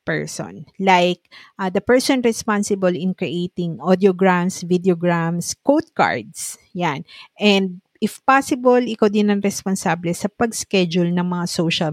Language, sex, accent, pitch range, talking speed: English, female, Filipino, 180-225 Hz, 125 wpm